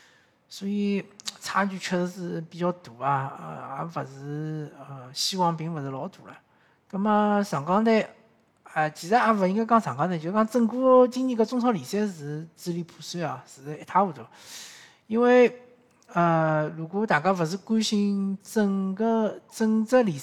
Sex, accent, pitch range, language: male, native, 150-205 Hz, Chinese